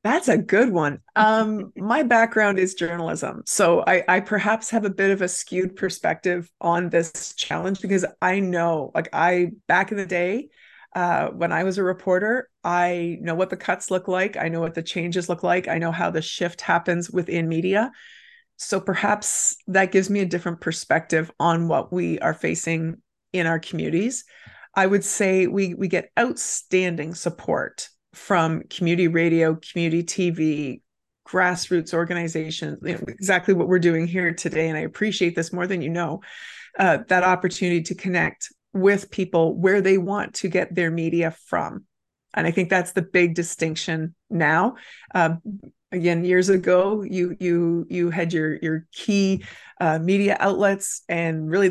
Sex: female